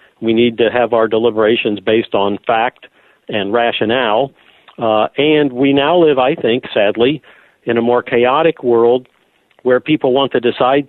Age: 50-69